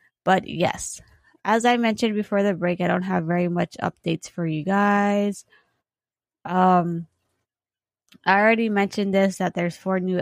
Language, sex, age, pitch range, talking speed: English, female, 20-39, 165-195 Hz, 155 wpm